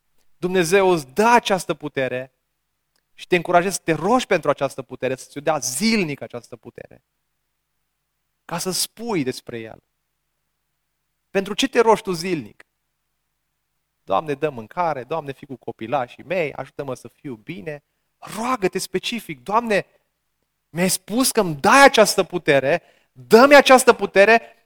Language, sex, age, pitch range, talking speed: Romanian, male, 30-49, 175-235 Hz, 135 wpm